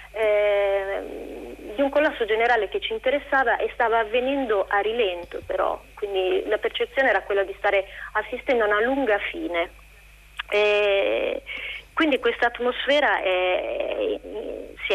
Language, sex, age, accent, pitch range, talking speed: Italian, female, 30-49, native, 185-245 Hz, 125 wpm